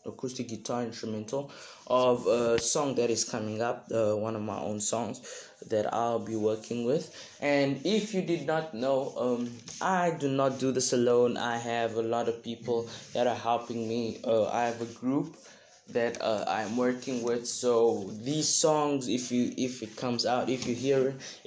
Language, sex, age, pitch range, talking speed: English, male, 20-39, 110-125 Hz, 185 wpm